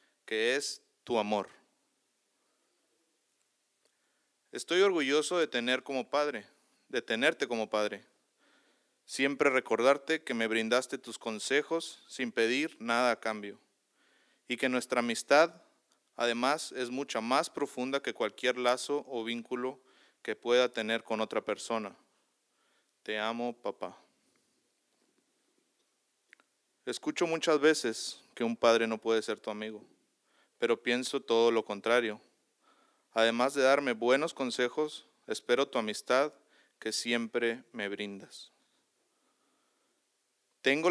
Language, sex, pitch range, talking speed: English, male, 115-140 Hz, 115 wpm